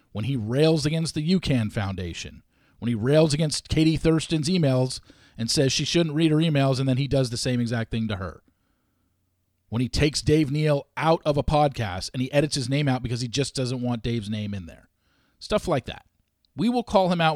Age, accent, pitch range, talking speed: 40-59, American, 115-170 Hz, 220 wpm